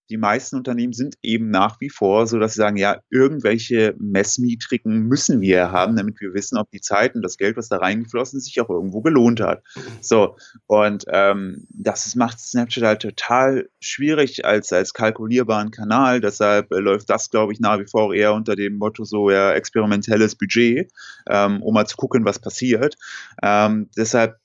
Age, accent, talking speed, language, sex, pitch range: 30-49, German, 185 wpm, German, male, 105-125 Hz